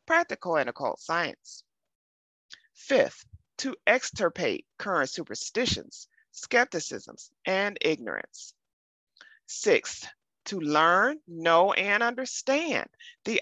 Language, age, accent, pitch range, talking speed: English, 30-49, American, 170-265 Hz, 85 wpm